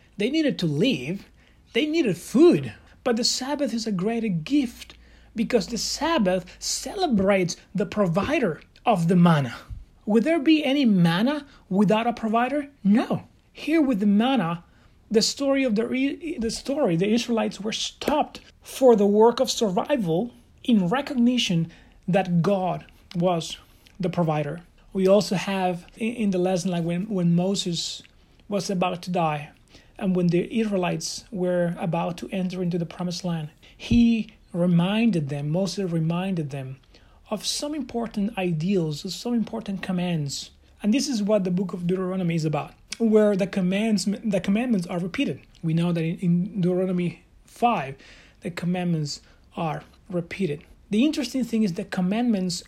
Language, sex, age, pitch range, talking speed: English, male, 30-49, 180-230 Hz, 150 wpm